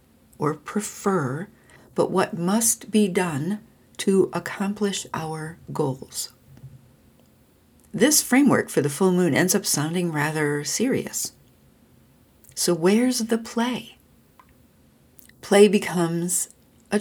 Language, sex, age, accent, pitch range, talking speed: English, female, 60-79, American, 165-220 Hz, 100 wpm